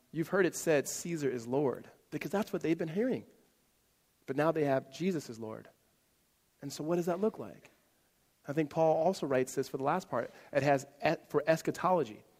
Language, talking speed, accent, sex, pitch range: English, 200 wpm, American, male, 125-195 Hz